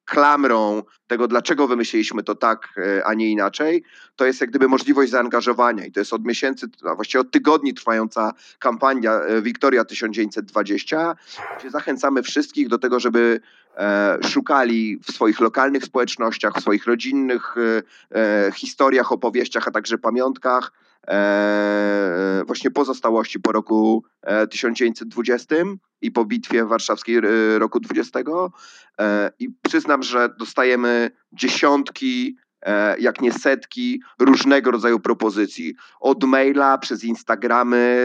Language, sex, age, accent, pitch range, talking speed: Polish, male, 30-49, native, 115-135 Hz, 115 wpm